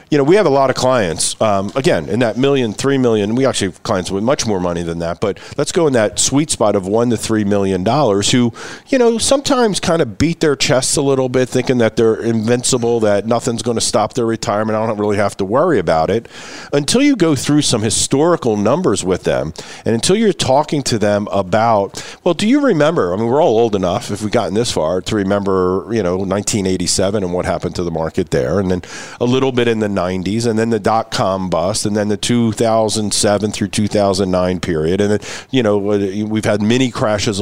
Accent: American